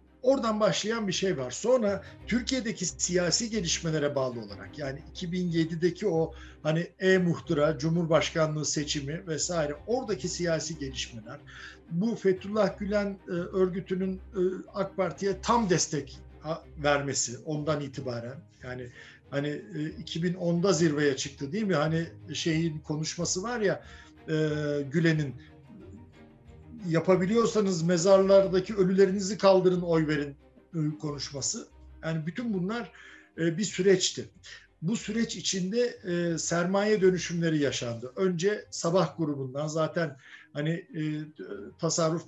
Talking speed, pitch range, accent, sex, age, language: 100 wpm, 145-190 Hz, native, male, 60-79, Turkish